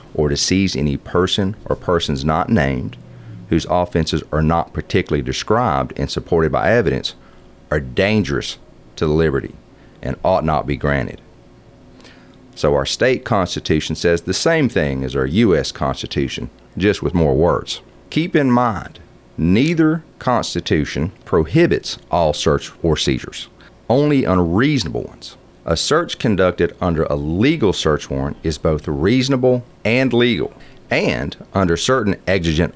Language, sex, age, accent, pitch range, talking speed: English, male, 40-59, American, 75-105 Hz, 135 wpm